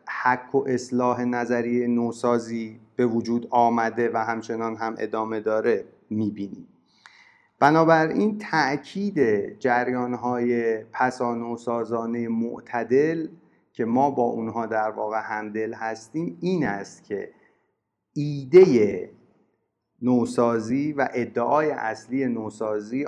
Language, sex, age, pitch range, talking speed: Persian, male, 30-49, 115-145 Hz, 95 wpm